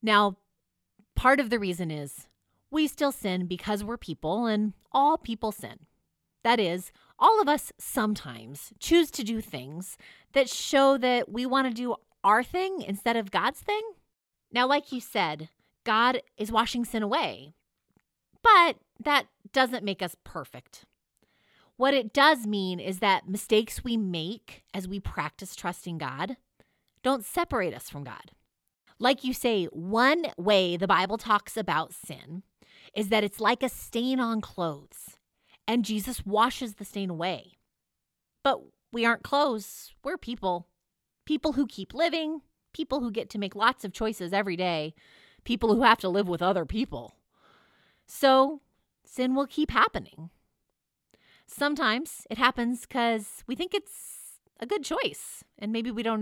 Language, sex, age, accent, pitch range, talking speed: English, female, 30-49, American, 195-260 Hz, 155 wpm